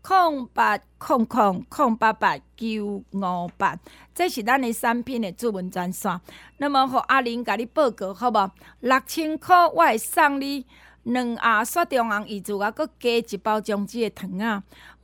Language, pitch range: Chinese, 205-290 Hz